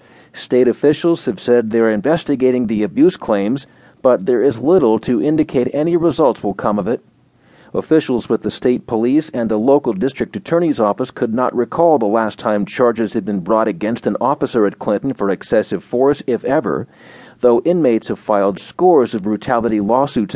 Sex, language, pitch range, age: male, English, 110-155 Hz, 40-59